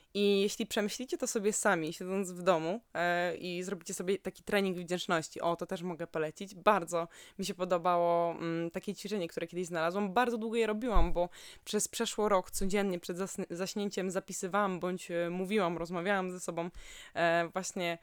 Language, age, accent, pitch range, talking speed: Polish, 20-39, native, 180-210 Hz, 155 wpm